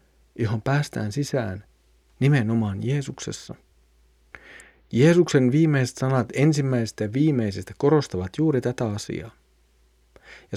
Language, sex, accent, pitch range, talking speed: Finnish, male, native, 100-140 Hz, 90 wpm